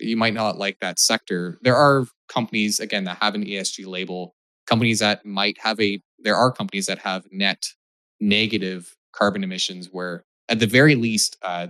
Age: 20-39